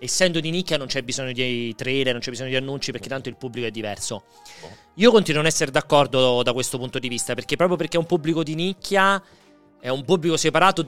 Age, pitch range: 30-49, 120-155 Hz